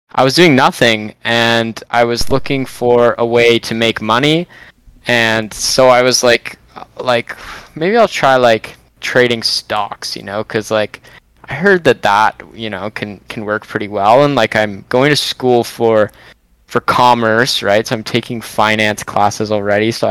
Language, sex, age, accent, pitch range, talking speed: English, male, 20-39, American, 110-130 Hz, 175 wpm